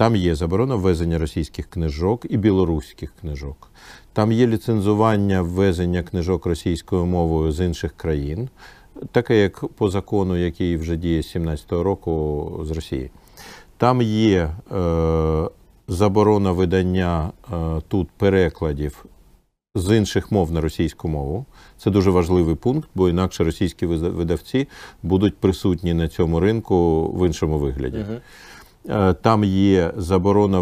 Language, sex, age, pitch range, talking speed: Ukrainian, male, 50-69, 80-100 Hz, 120 wpm